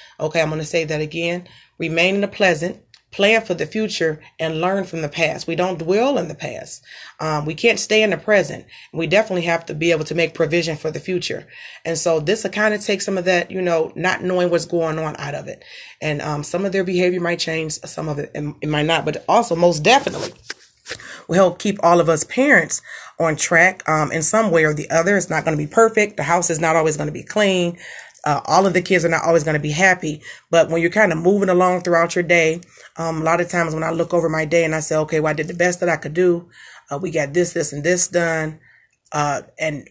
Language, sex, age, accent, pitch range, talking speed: English, female, 30-49, American, 155-180 Hz, 255 wpm